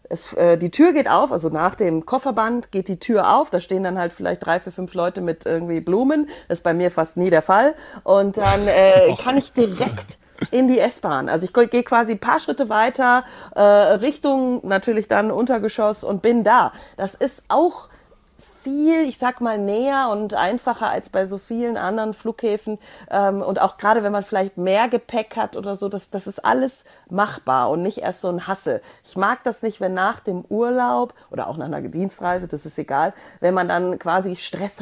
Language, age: German, 40-59